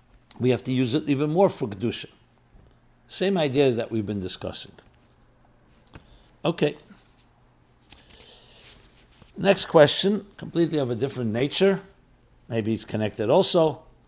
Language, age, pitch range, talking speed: English, 60-79, 115-145 Hz, 115 wpm